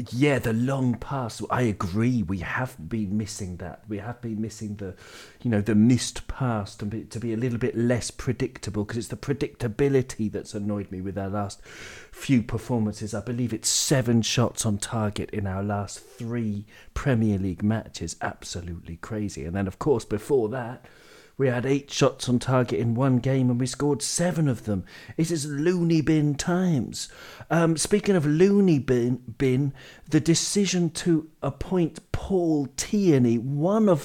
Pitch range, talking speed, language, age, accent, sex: 115-155 Hz, 170 wpm, English, 40-59, British, male